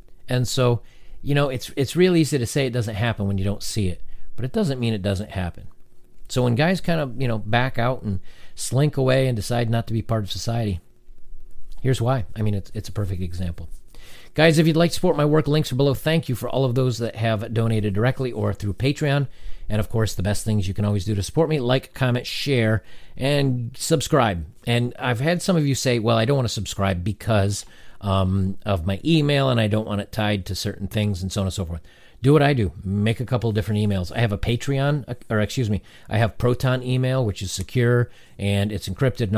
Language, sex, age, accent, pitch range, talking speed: English, male, 40-59, American, 100-130 Hz, 240 wpm